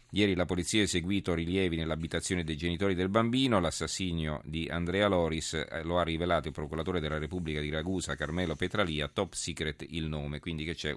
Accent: native